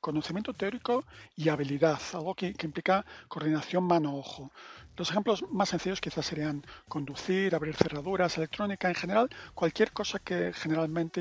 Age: 40-59